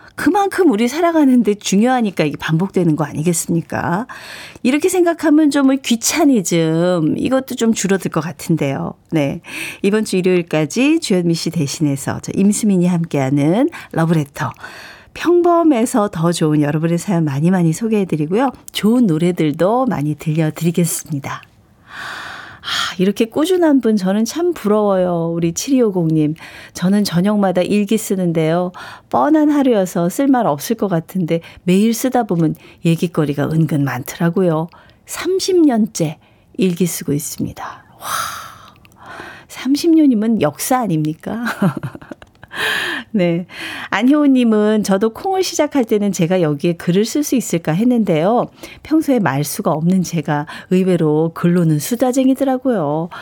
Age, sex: 40-59, female